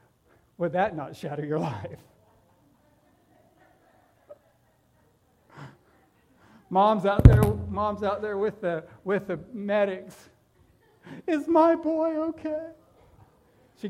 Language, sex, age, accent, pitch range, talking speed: English, male, 60-79, American, 160-270 Hz, 95 wpm